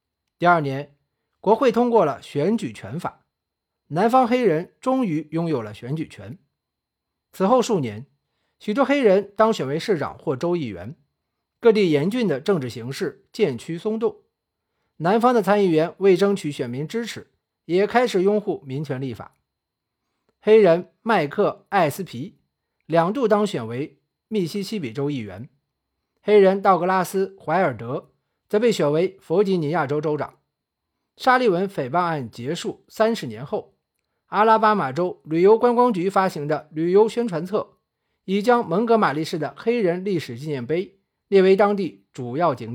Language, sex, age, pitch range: Chinese, male, 50-69, 145-215 Hz